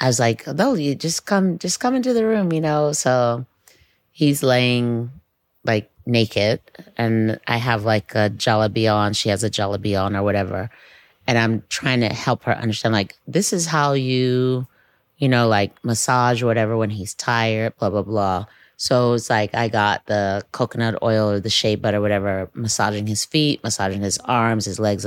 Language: English